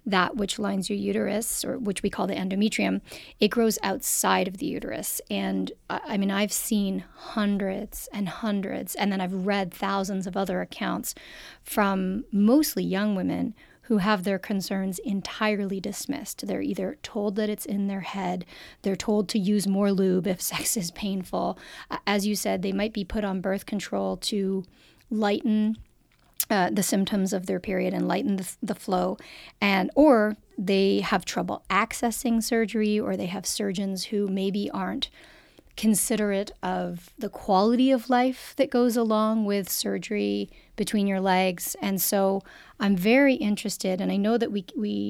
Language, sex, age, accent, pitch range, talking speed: English, female, 30-49, American, 190-215 Hz, 165 wpm